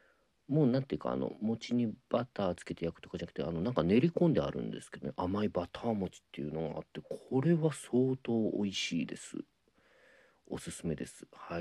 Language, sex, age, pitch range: Japanese, male, 40-59, 80-125 Hz